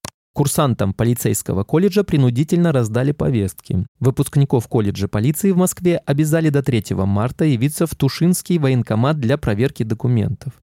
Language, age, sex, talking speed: Russian, 20-39, male, 125 wpm